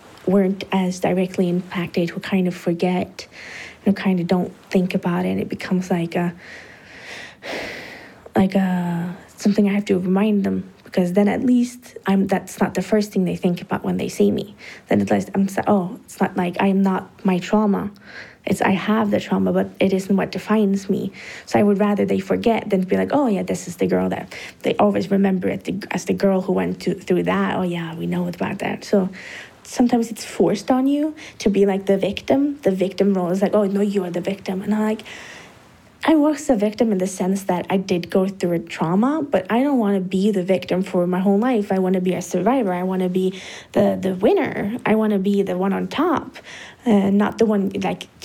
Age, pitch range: 20-39, 185-210 Hz